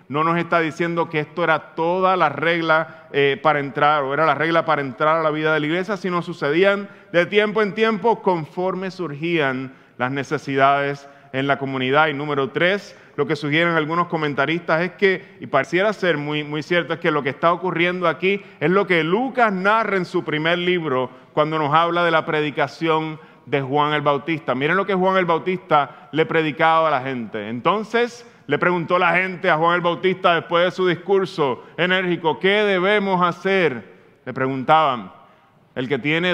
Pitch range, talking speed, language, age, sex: 140-180 Hz, 185 wpm, Spanish, 30-49, male